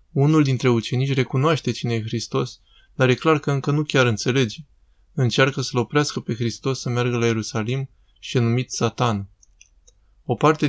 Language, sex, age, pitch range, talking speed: Romanian, male, 20-39, 115-135 Hz, 165 wpm